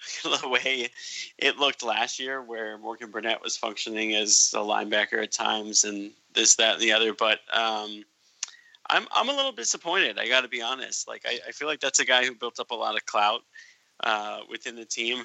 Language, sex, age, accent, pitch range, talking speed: English, male, 20-39, American, 105-130 Hz, 205 wpm